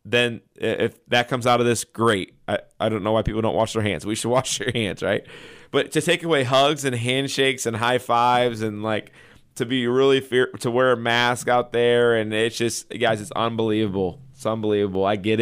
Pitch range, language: 100-115 Hz, English